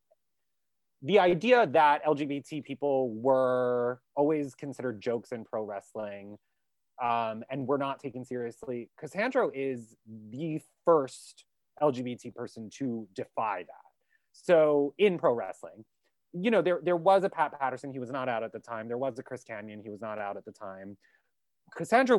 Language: English